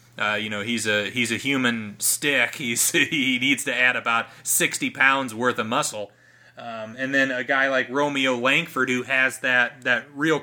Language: English